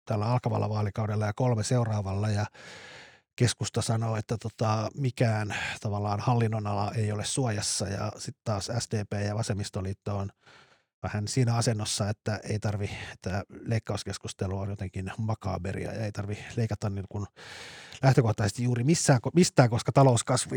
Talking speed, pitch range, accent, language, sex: 130 wpm, 100-125 Hz, native, Finnish, male